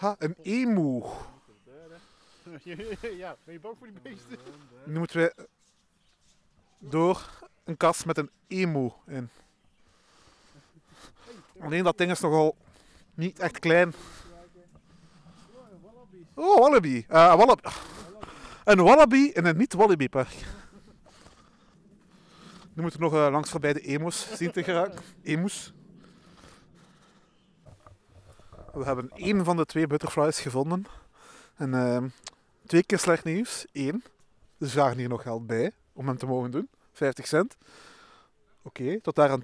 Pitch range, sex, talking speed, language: 135-185 Hz, male, 115 wpm, Dutch